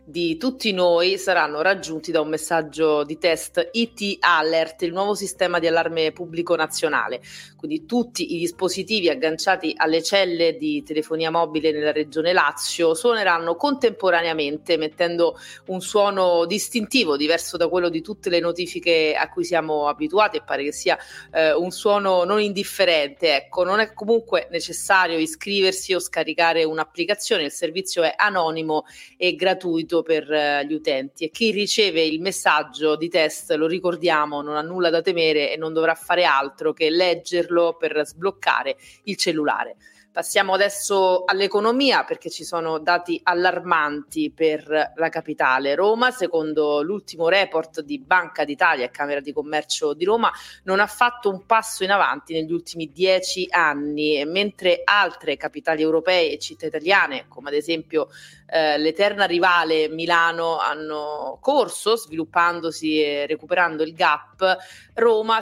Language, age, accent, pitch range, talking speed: Italian, 30-49, native, 155-195 Hz, 145 wpm